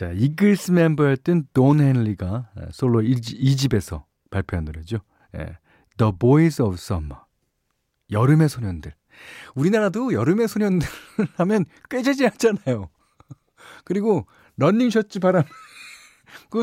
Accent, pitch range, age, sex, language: native, 95-155 Hz, 40-59, male, Korean